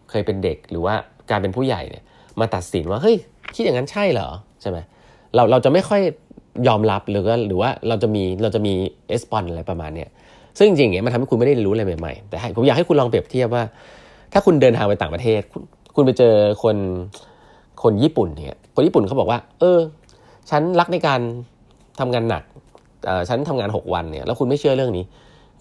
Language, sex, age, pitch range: Thai, male, 20-39, 100-135 Hz